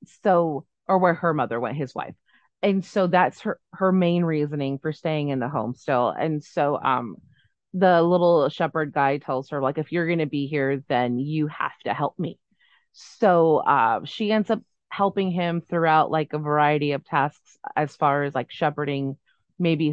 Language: English